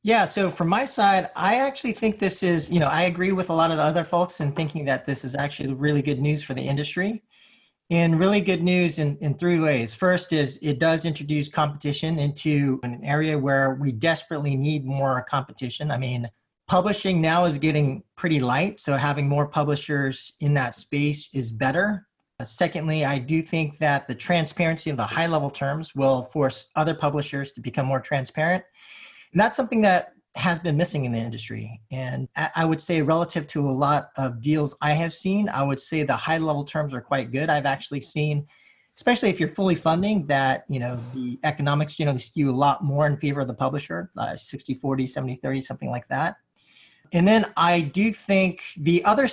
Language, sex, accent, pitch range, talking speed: English, male, American, 135-175 Hz, 200 wpm